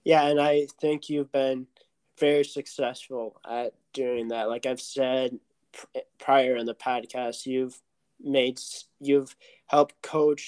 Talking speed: 135 wpm